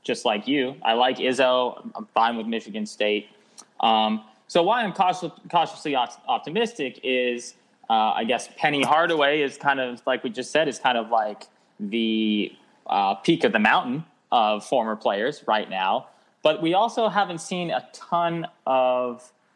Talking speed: 165 wpm